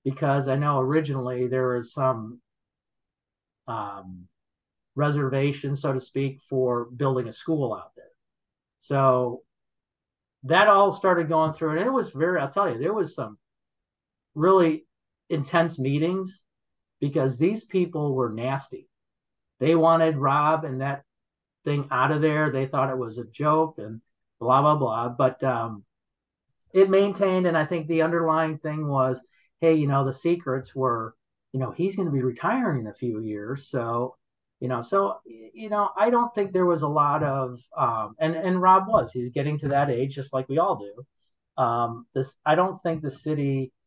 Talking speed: 170 wpm